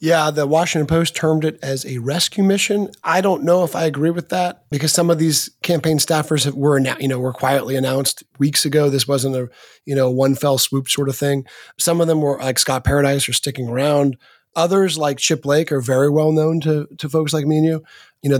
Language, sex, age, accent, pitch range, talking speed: English, male, 30-49, American, 135-170 Hz, 230 wpm